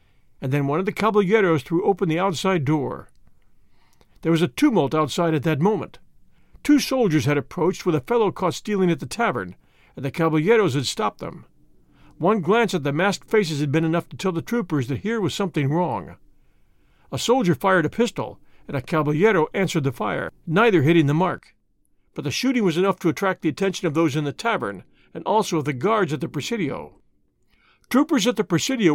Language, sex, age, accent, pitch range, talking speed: English, male, 50-69, American, 155-205 Hz, 200 wpm